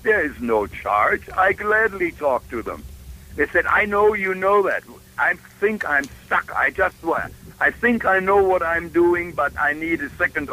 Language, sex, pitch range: English, male, 130-175 Hz